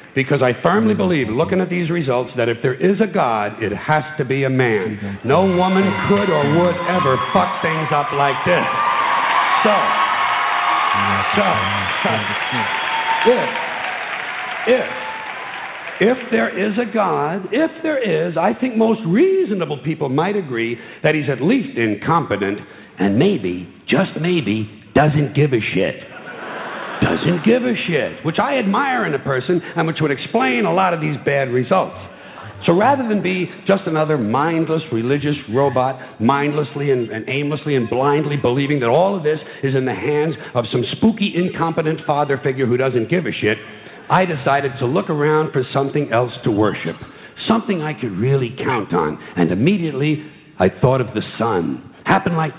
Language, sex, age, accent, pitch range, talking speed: English, male, 60-79, American, 130-185 Hz, 165 wpm